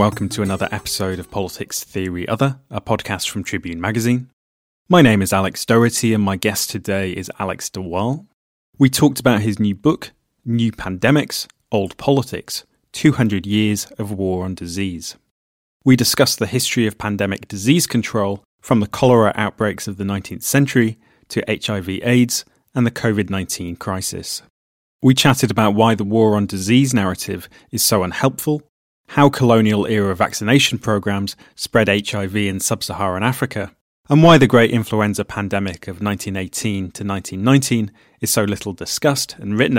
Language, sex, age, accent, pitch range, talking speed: English, male, 30-49, British, 95-120 Hz, 150 wpm